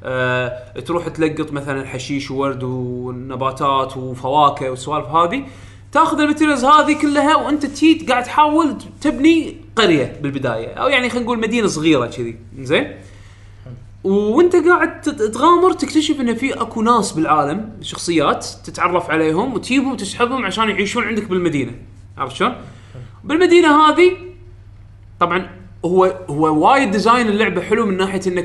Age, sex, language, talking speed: 20-39, male, Arabic, 130 wpm